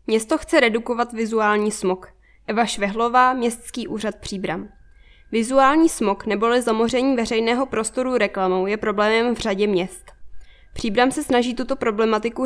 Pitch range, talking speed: 210-240 Hz, 130 wpm